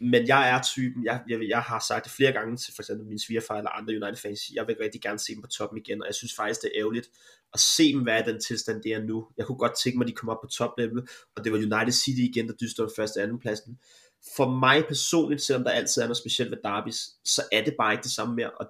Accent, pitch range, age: native, 110-125 Hz, 30-49